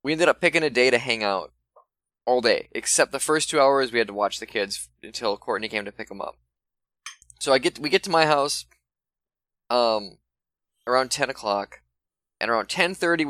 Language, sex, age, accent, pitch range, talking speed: English, male, 10-29, American, 110-155 Hz, 200 wpm